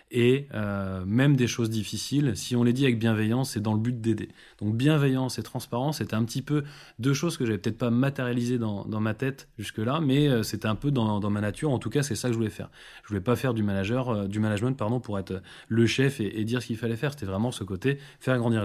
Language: French